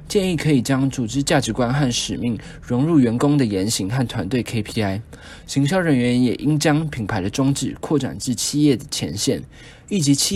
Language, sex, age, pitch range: Chinese, male, 20-39, 115-150 Hz